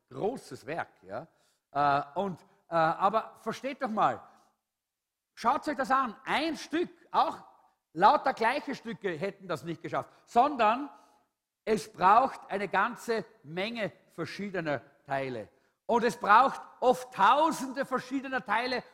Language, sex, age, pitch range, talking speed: English, male, 50-69, 170-245 Hz, 115 wpm